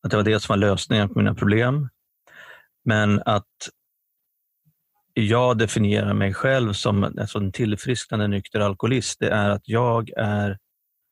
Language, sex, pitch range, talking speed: Swedish, male, 105-125 Hz, 135 wpm